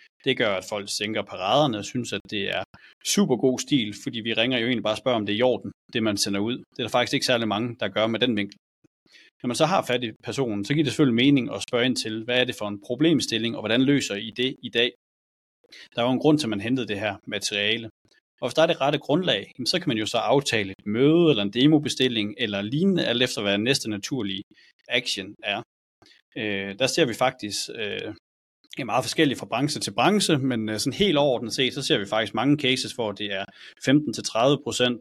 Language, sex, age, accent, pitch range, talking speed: Danish, male, 30-49, native, 105-130 Hz, 235 wpm